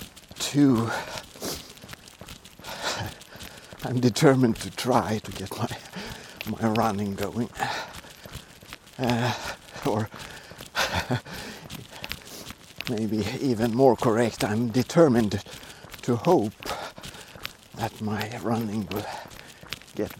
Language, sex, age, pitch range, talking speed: English, male, 60-79, 110-130 Hz, 75 wpm